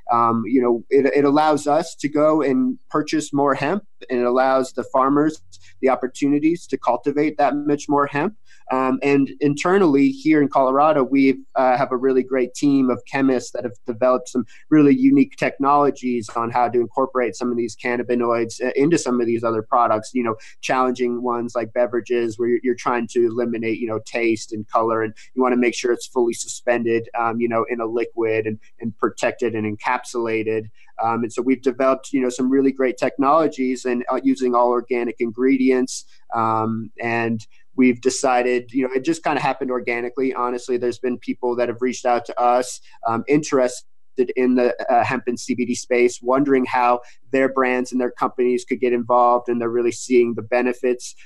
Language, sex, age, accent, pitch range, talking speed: English, male, 30-49, American, 120-130 Hz, 190 wpm